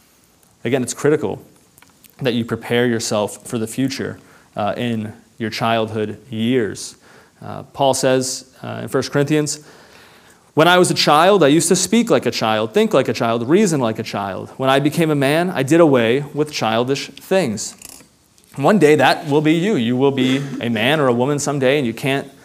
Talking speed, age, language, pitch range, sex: 190 wpm, 30-49, English, 115-145 Hz, male